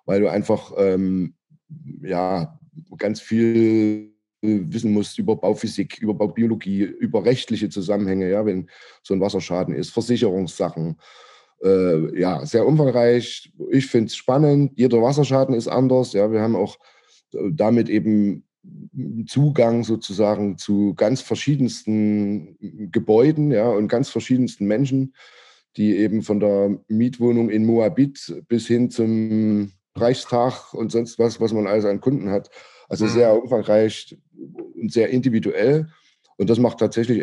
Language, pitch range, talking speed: German, 105-125 Hz, 125 wpm